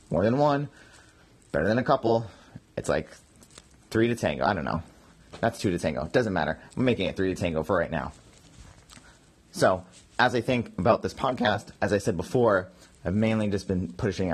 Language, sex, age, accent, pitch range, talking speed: English, male, 30-49, American, 95-110 Hz, 195 wpm